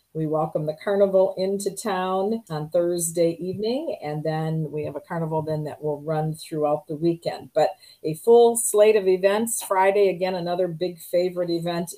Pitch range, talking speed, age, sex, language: 160-190 Hz, 170 wpm, 40-59, female, English